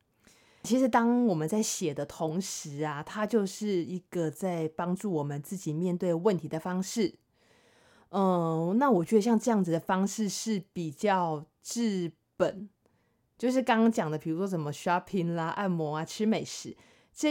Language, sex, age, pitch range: Chinese, female, 20-39, 170-225 Hz